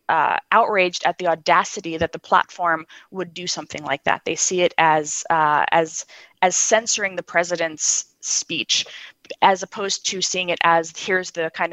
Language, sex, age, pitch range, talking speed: English, female, 20-39, 165-210 Hz, 170 wpm